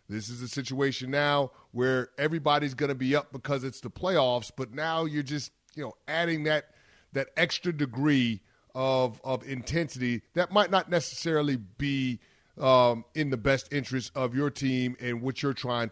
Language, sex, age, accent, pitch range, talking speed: English, male, 30-49, American, 125-160 Hz, 175 wpm